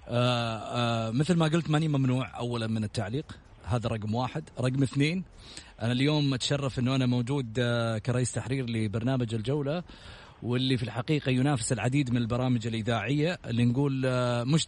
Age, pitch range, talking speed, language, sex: 30-49, 120-150 Hz, 140 wpm, English, male